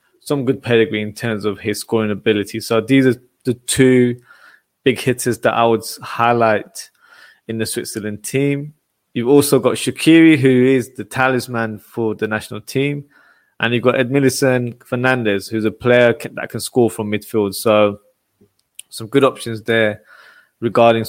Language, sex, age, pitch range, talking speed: English, male, 20-39, 110-130 Hz, 155 wpm